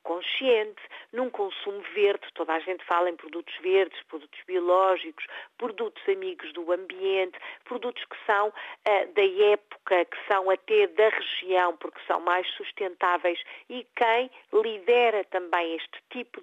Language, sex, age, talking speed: Portuguese, female, 40-59, 135 wpm